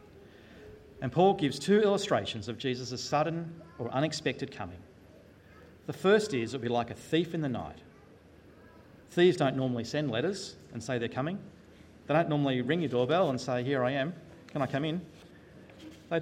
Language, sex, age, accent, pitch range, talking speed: English, male, 40-59, Australian, 115-150 Hz, 180 wpm